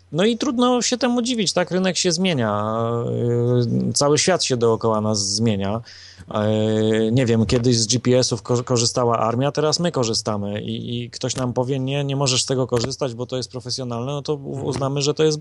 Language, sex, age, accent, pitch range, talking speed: Polish, male, 30-49, native, 110-150 Hz, 180 wpm